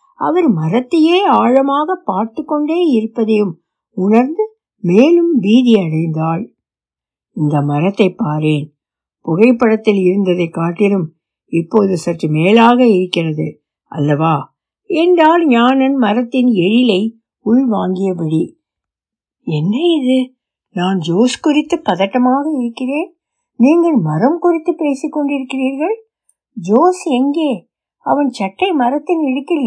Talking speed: 85 wpm